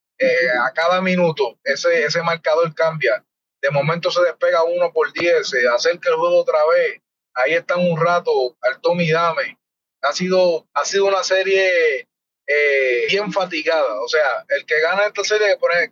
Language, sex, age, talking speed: Spanish, male, 30-49, 175 wpm